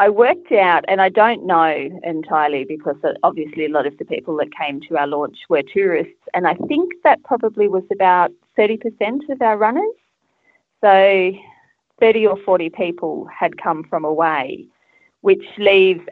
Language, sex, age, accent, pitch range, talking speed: English, female, 30-49, Australian, 155-210 Hz, 165 wpm